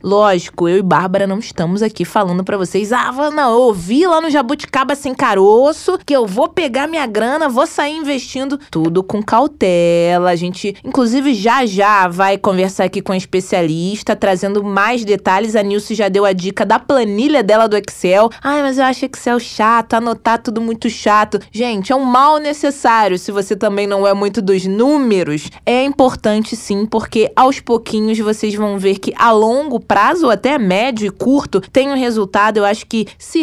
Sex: female